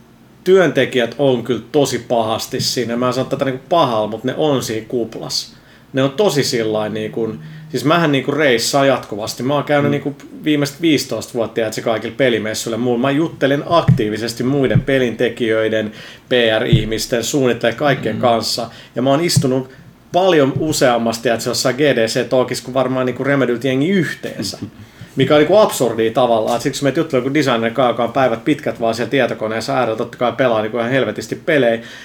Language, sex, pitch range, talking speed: Finnish, male, 115-135 Hz, 155 wpm